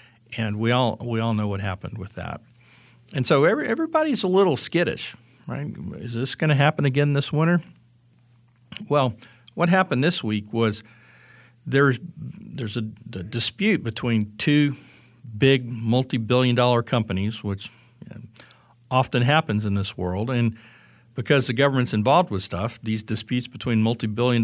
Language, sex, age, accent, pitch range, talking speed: English, male, 50-69, American, 110-130 Hz, 150 wpm